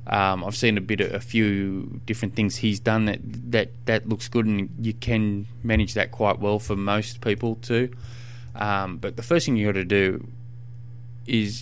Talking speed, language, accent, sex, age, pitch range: 195 wpm, English, Australian, male, 20-39, 105-120 Hz